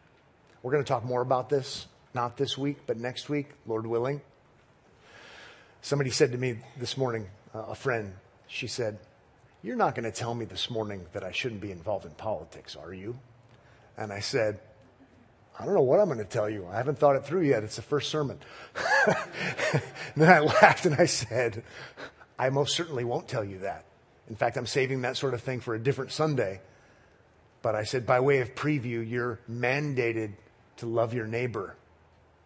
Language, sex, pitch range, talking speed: English, male, 110-140 Hz, 190 wpm